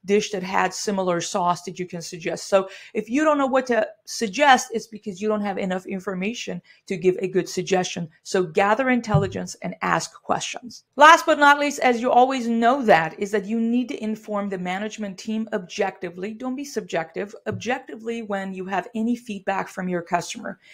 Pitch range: 185-235 Hz